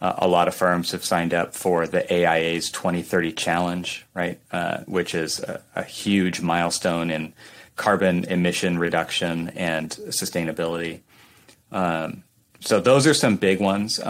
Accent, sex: American, male